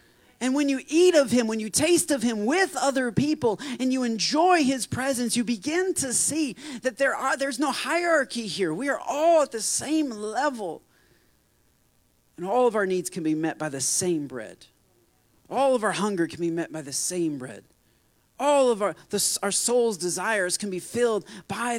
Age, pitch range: 40-59, 200-260 Hz